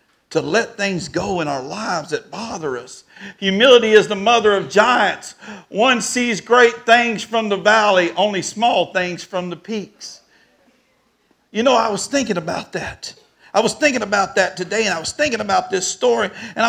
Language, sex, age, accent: English, male, 50-69, American